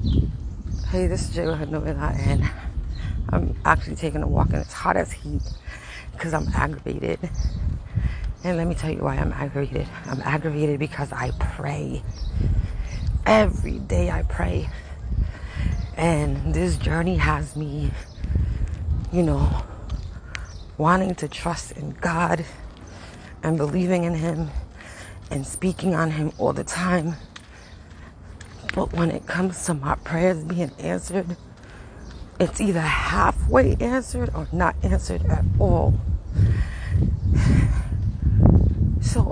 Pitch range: 85-145 Hz